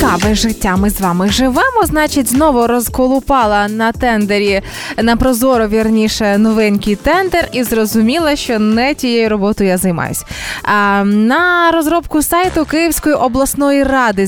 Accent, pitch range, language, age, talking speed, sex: native, 215-290 Hz, Ukrainian, 20-39, 135 wpm, female